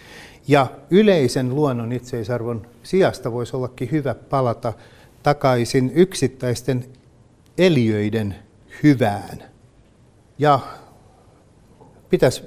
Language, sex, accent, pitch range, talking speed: Finnish, male, native, 115-140 Hz, 70 wpm